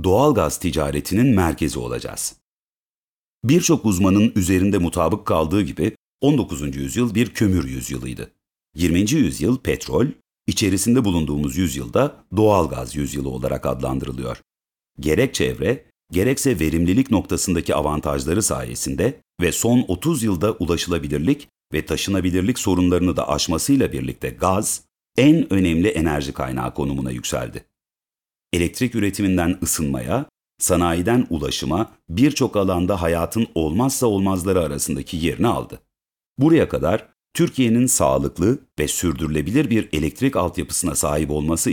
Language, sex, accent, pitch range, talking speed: Turkish, male, native, 75-110 Hz, 105 wpm